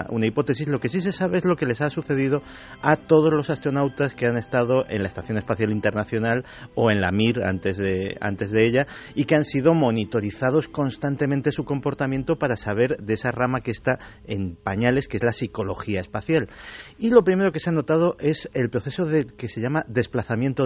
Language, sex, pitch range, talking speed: Spanish, male, 110-155 Hz, 205 wpm